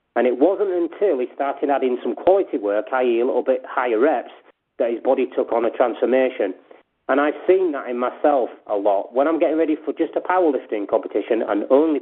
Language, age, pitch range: English, 30-49, 115-165 Hz